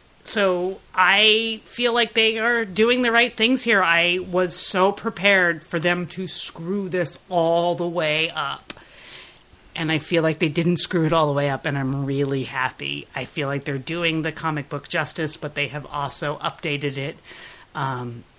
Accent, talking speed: American, 185 wpm